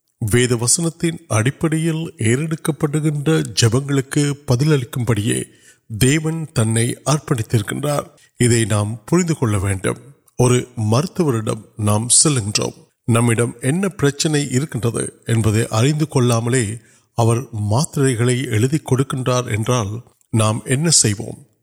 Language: Urdu